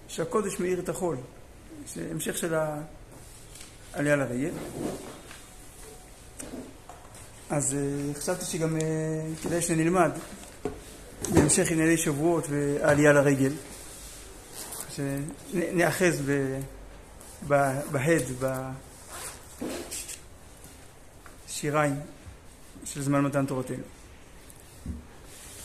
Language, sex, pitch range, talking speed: Hebrew, male, 120-165 Hz, 60 wpm